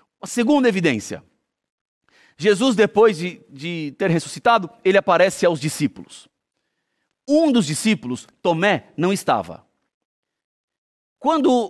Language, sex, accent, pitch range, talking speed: Portuguese, male, Brazilian, 190-270 Hz, 105 wpm